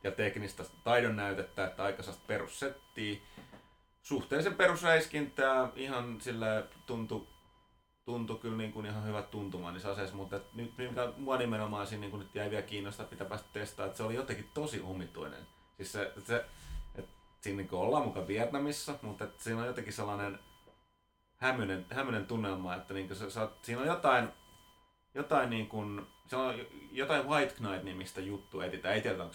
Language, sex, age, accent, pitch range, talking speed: Finnish, male, 30-49, native, 95-120 Hz, 165 wpm